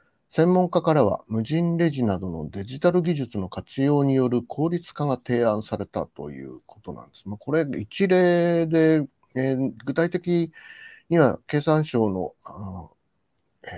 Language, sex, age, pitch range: Japanese, male, 40-59, 100-160 Hz